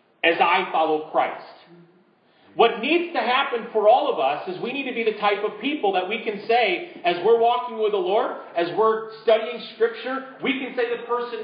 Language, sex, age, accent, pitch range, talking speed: English, male, 40-59, American, 190-230 Hz, 210 wpm